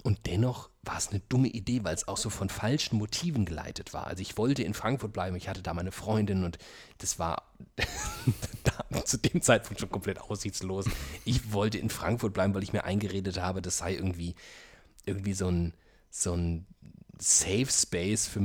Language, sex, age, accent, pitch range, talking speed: German, male, 30-49, German, 95-115 Hz, 180 wpm